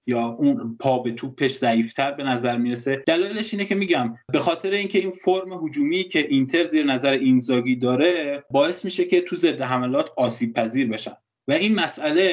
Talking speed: 185 wpm